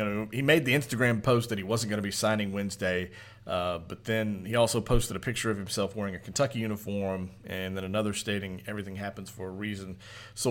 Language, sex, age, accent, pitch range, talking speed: English, male, 30-49, American, 95-120 Hz, 210 wpm